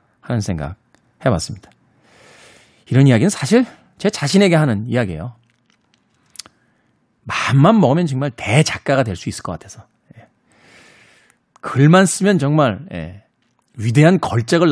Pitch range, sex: 110-155 Hz, male